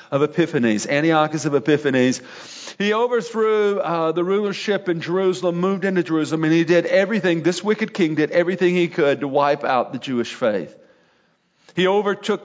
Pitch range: 155-185 Hz